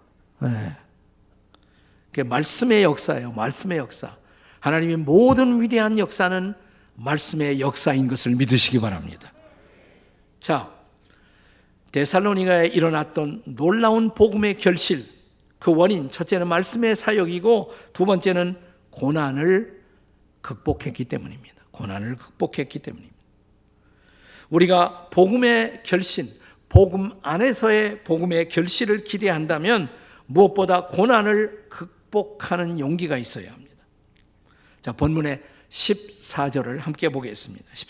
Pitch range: 135-190 Hz